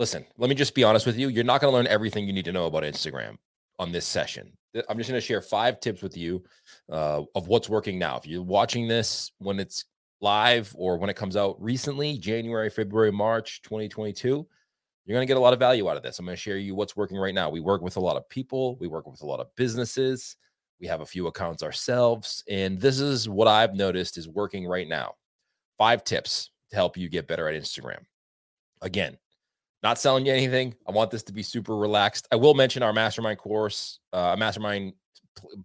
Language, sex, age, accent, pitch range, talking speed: English, male, 30-49, American, 95-120 Hz, 225 wpm